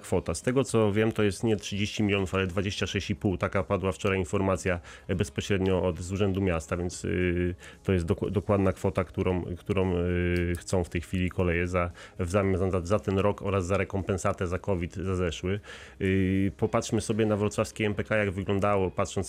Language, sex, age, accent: Polish, male, 30-49, native